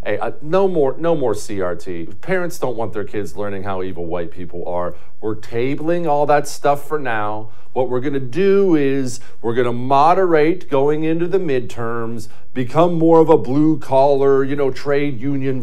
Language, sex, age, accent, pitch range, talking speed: English, male, 50-69, American, 110-145 Hz, 180 wpm